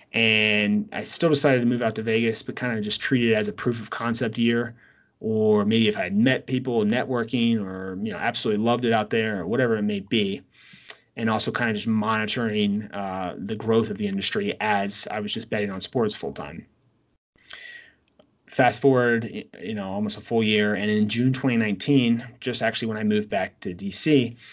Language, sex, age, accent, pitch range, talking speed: English, male, 30-49, American, 105-130 Hz, 205 wpm